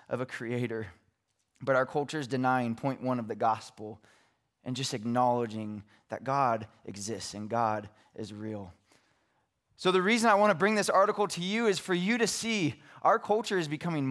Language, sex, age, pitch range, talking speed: English, male, 20-39, 125-175 Hz, 185 wpm